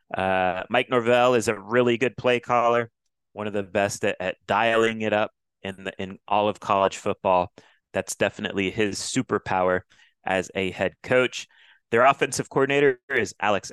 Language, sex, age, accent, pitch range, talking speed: English, male, 30-49, American, 95-115 Hz, 165 wpm